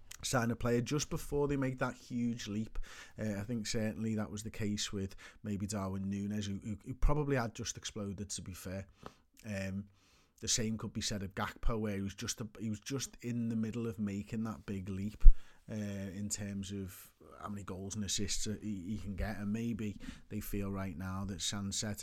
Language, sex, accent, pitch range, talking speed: English, male, British, 95-110 Hz, 200 wpm